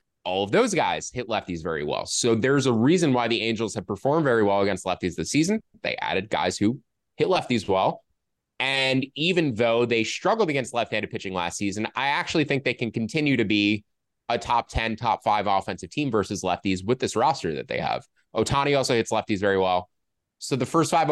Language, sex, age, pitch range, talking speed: English, male, 20-39, 110-145 Hz, 205 wpm